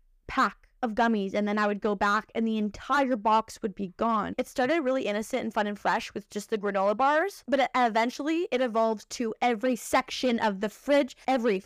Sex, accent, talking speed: female, American, 205 wpm